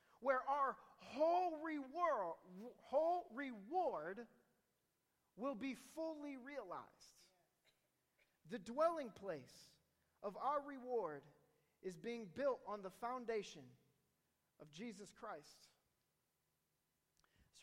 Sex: male